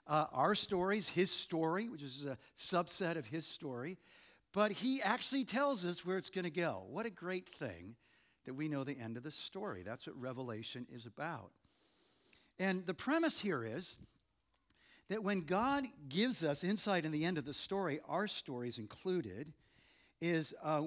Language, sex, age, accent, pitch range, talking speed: English, male, 50-69, American, 150-195 Hz, 175 wpm